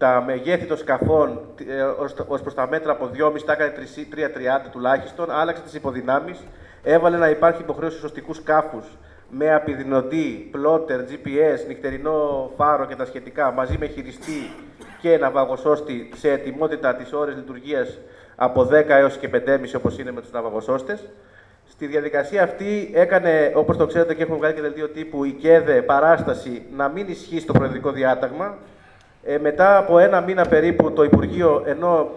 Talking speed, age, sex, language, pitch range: 150 wpm, 30-49, male, Greek, 140-170 Hz